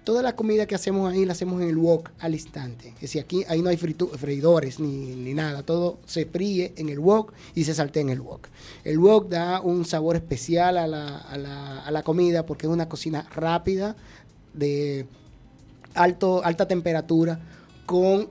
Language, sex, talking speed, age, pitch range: English, male, 195 wpm, 30-49, 140-170 Hz